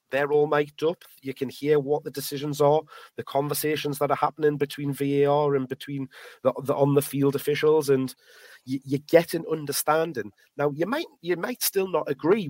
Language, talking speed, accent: English, 185 wpm, British